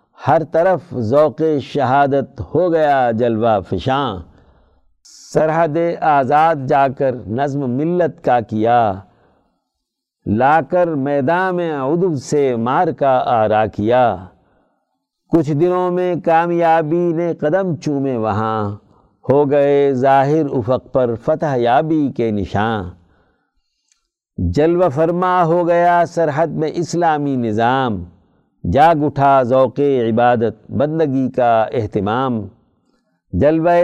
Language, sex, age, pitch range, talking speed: Urdu, male, 50-69, 125-170 Hz, 100 wpm